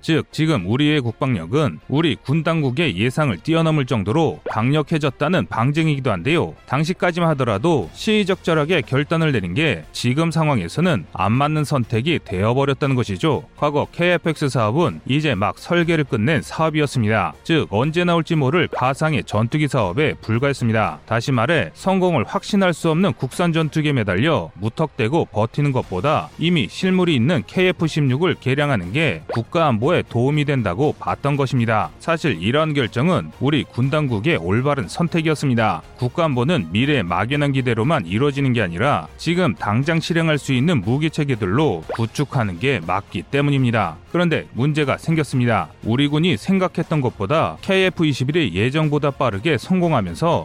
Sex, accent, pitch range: male, native, 120-165 Hz